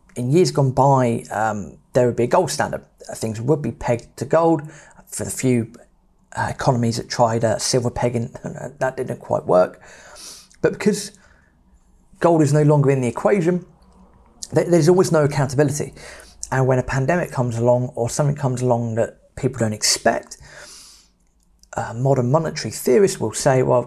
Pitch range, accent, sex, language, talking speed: 120-155 Hz, British, male, English, 165 wpm